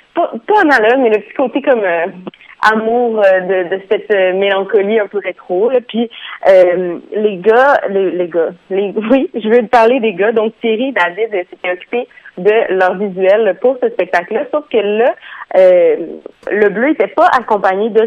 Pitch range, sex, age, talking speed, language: 185-225 Hz, female, 30-49, 185 wpm, French